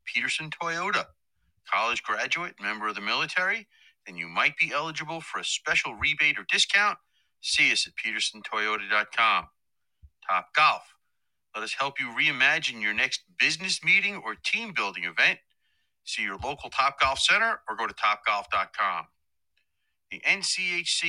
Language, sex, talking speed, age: English, male, 140 wpm, 40-59